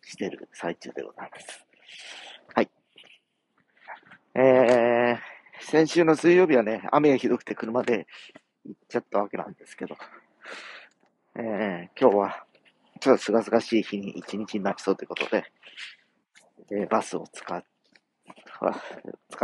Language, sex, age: Japanese, male, 40-59